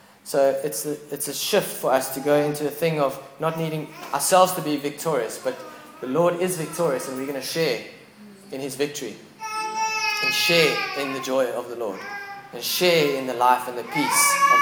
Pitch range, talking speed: 130-170 Hz, 205 wpm